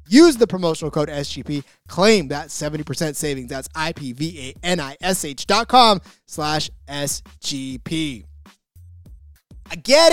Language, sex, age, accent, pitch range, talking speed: English, male, 20-39, American, 155-235 Hz, 90 wpm